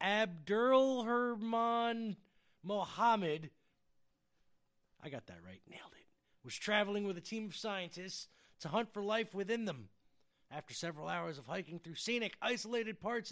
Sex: male